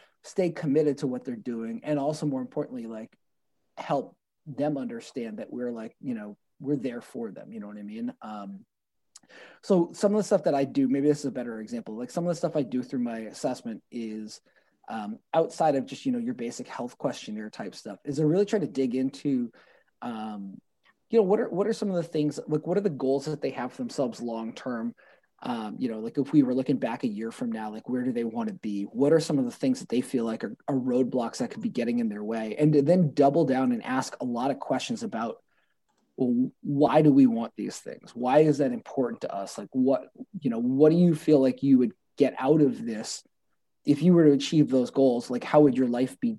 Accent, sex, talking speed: American, male, 245 wpm